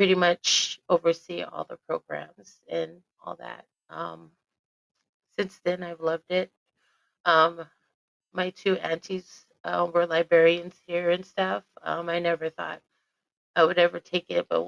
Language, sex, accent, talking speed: English, female, American, 145 wpm